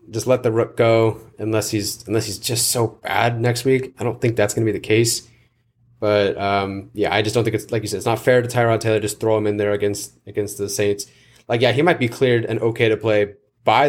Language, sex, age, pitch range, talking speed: English, male, 20-39, 105-120 Hz, 260 wpm